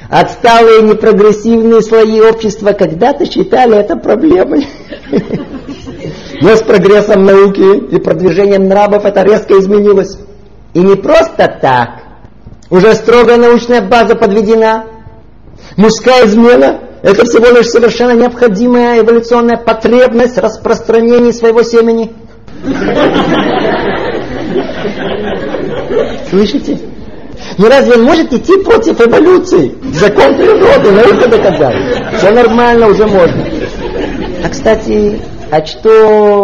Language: Russian